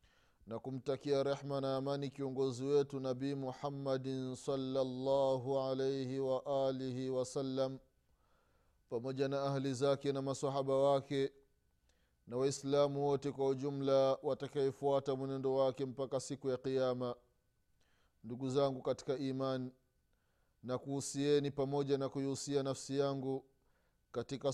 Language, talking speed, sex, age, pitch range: Swahili, 110 wpm, male, 30-49, 130-140 Hz